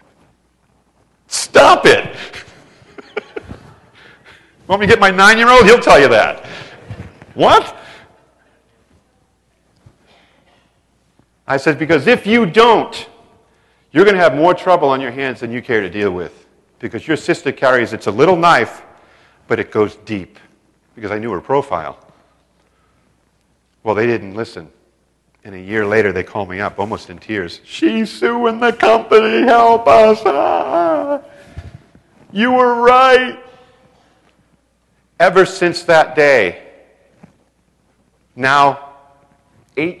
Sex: male